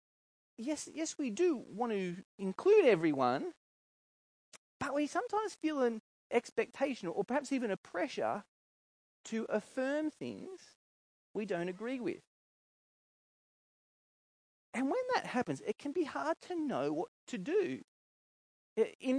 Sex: male